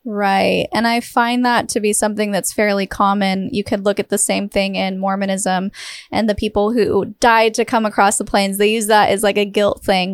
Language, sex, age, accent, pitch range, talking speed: English, female, 10-29, American, 205-235 Hz, 225 wpm